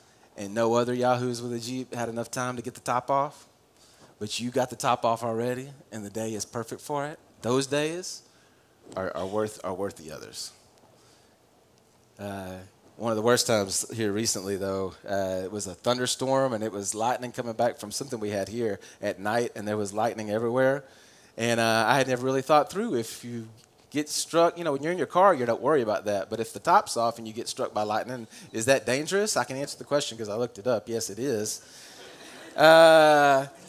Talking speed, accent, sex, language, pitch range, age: 215 wpm, American, male, English, 115-185 Hz, 30-49